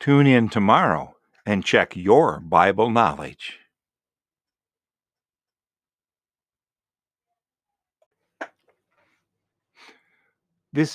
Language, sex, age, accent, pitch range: English, male, 50-69, American, 110-170 Hz